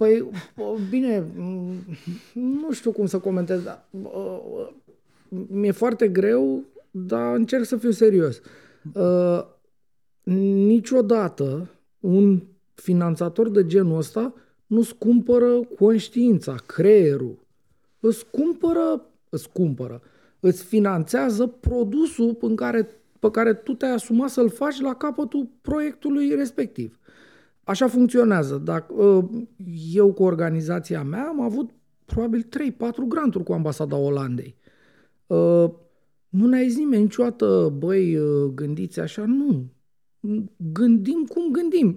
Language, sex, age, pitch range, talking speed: Romanian, male, 40-59, 180-240 Hz, 105 wpm